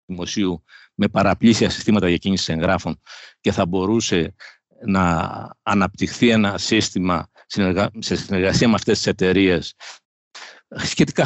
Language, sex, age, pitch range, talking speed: Greek, male, 60-79, 90-120 Hz, 105 wpm